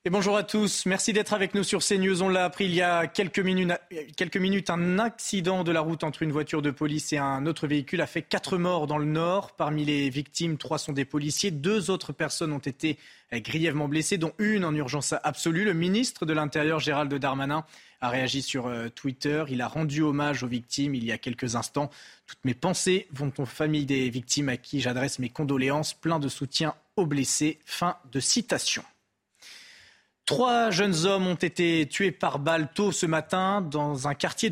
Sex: male